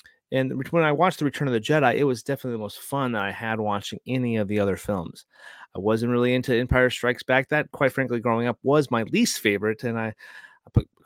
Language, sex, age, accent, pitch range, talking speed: English, male, 30-49, American, 110-145 Hz, 235 wpm